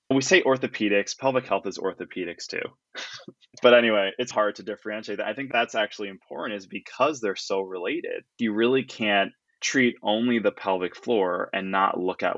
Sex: male